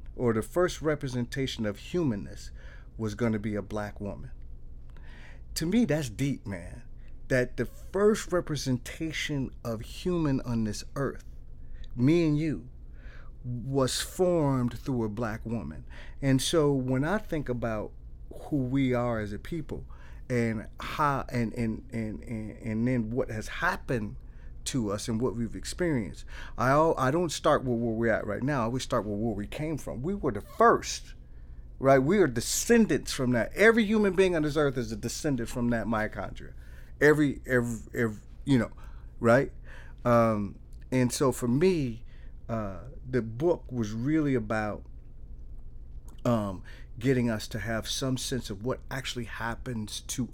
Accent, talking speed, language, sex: American, 160 wpm, English, male